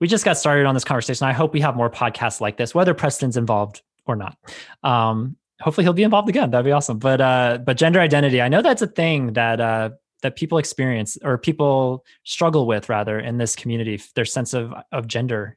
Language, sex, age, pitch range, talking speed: English, male, 20-39, 115-140 Hz, 220 wpm